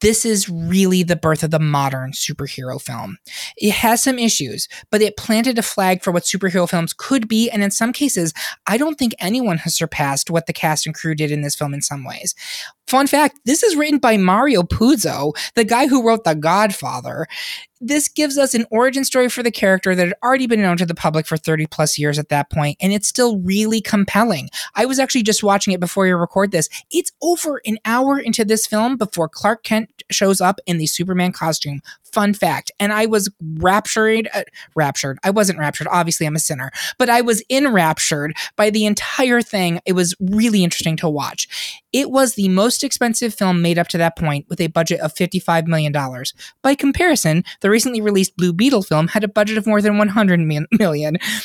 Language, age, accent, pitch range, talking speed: English, 20-39, American, 165-230 Hz, 210 wpm